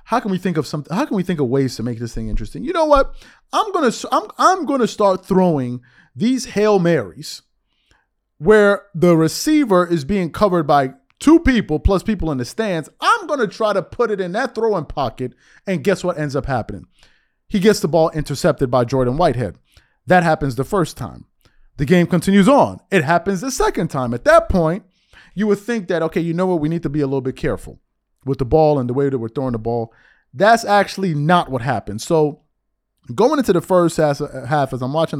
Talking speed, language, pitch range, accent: 215 wpm, English, 140-195 Hz, American